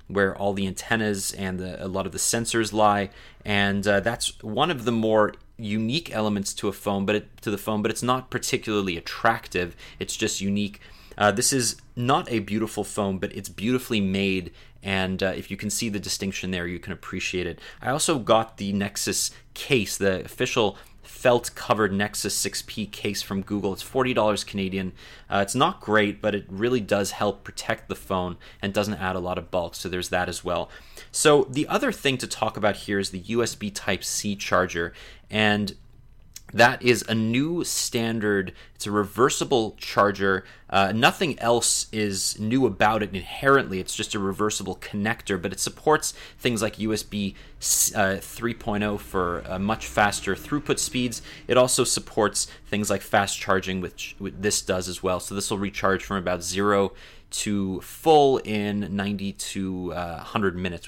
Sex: male